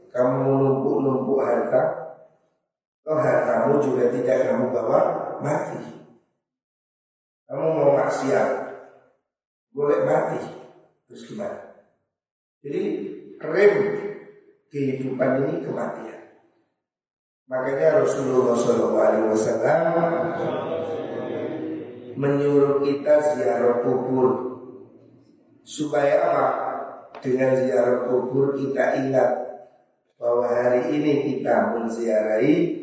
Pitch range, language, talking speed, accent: 120-145 Hz, Indonesian, 80 wpm, native